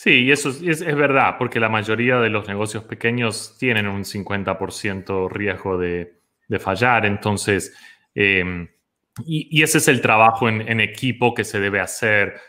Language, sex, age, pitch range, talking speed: Spanish, male, 30-49, 100-120 Hz, 175 wpm